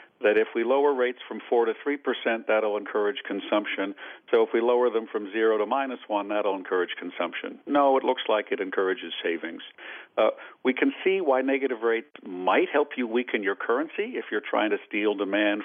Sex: male